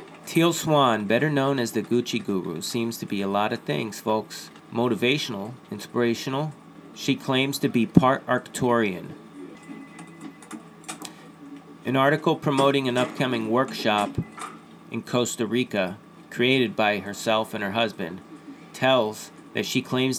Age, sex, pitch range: 40-59, male, 110-135 Hz